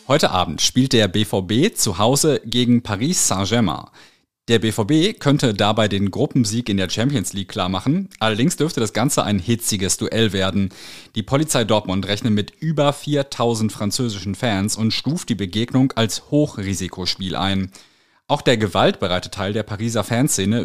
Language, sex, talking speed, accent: German, male, 150 wpm, German